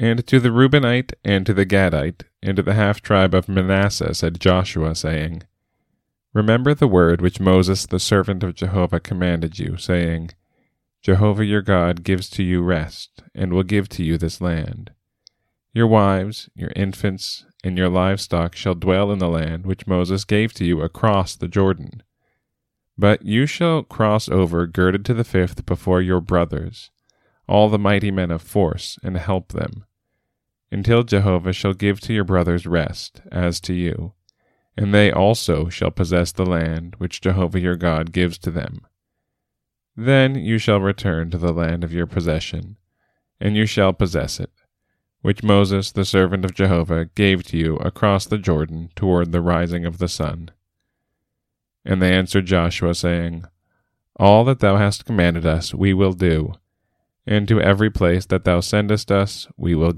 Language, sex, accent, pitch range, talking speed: English, male, American, 85-105 Hz, 165 wpm